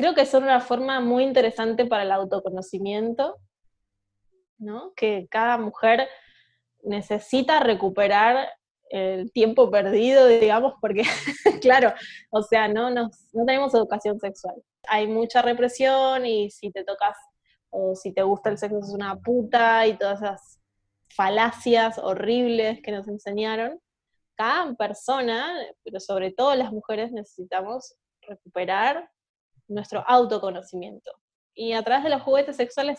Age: 20-39